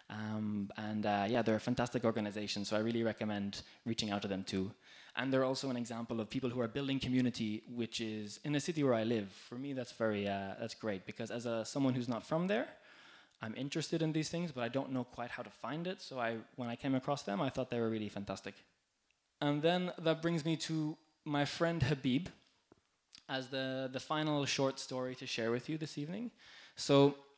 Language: French